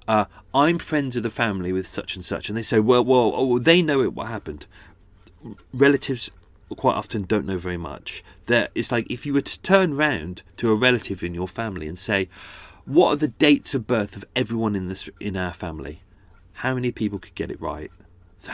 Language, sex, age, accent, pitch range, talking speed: English, male, 30-49, British, 95-130 Hz, 215 wpm